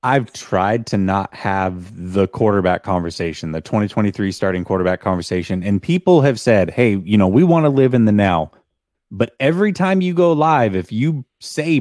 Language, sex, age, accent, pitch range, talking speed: English, male, 20-39, American, 100-155 Hz, 185 wpm